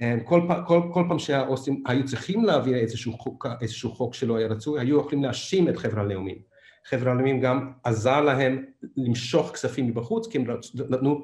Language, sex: Hebrew, male